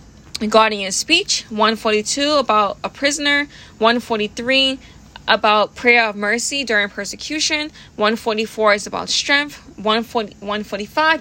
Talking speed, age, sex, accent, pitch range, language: 95 wpm, 20-39, female, American, 205-245 Hz, English